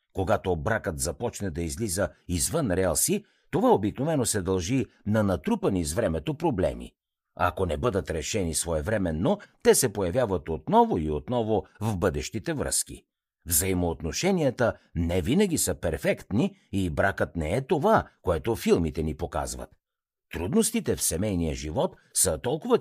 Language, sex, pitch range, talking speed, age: Bulgarian, male, 85-135 Hz, 135 wpm, 60-79